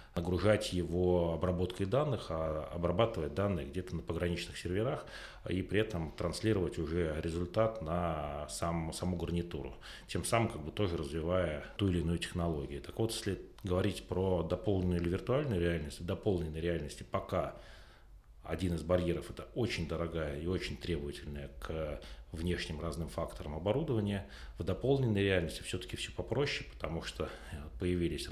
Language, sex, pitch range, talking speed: Russian, male, 80-95 Hz, 140 wpm